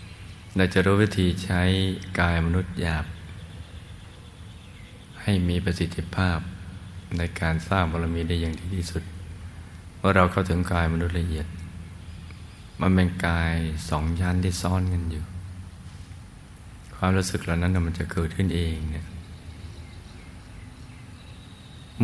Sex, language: male, Thai